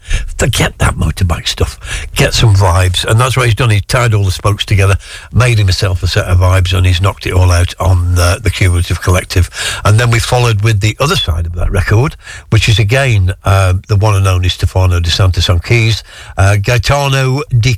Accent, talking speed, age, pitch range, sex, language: British, 205 wpm, 60-79, 95-120 Hz, male, English